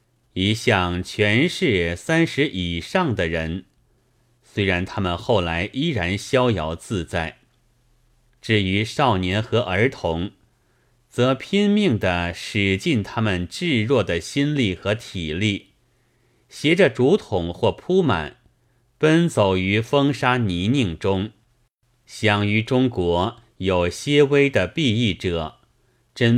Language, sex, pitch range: Chinese, male, 95-125 Hz